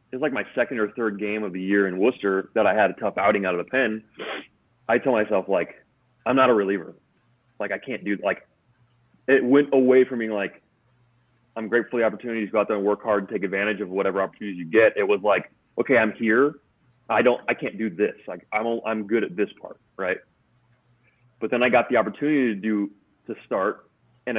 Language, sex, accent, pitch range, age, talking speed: English, male, American, 100-125 Hz, 30-49, 225 wpm